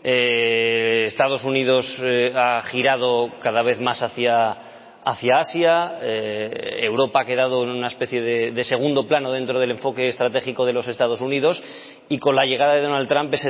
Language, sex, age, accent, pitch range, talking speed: Spanish, male, 20-39, Spanish, 115-135 Hz, 175 wpm